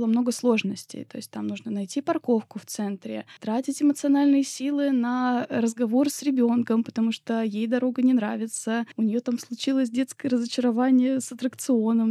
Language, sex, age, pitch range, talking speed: Russian, female, 20-39, 225-265 Hz, 155 wpm